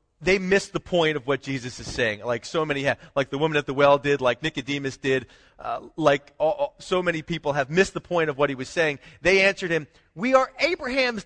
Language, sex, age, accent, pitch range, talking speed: English, male, 30-49, American, 135-185 Hz, 240 wpm